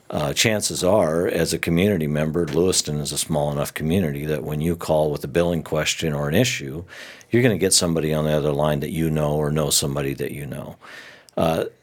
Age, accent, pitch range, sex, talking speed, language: 50-69, American, 75-85 Hz, male, 220 wpm, English